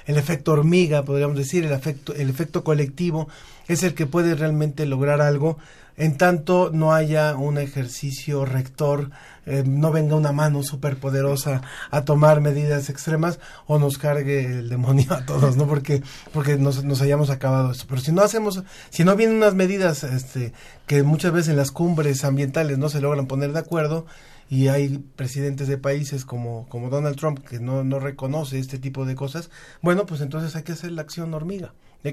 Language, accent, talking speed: Spanish, Mexican, 185 wpm